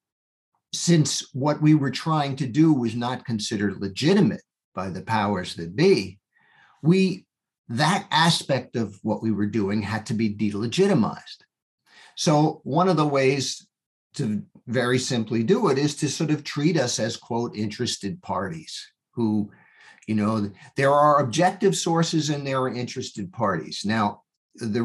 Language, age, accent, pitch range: English, 50-69, American, 110-160 Hz